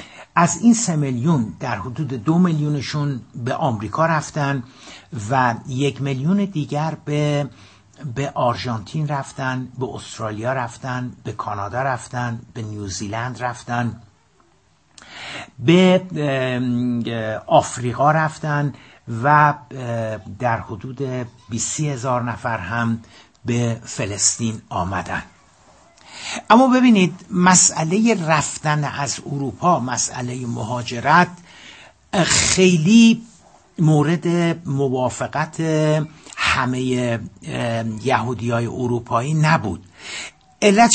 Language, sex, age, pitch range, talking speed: Persian, male, 60-79, 120-155 Hz, 85 wpm